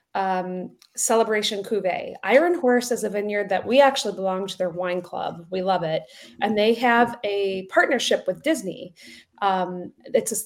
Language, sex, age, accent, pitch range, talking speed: English, female, 30-49, American, 185-225 Hz, 160 wpm